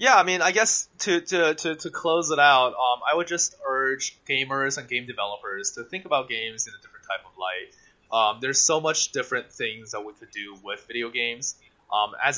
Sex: male